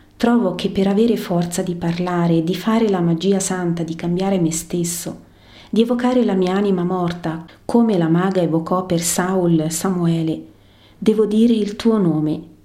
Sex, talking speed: female, 160 wpm